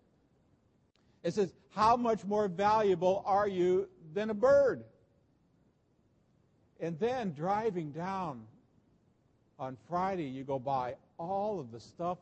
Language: English